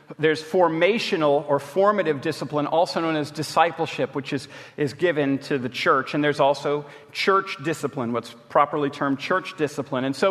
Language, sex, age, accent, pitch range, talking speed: English, male, 40-59, American, 145-200 Hz, 165 wpm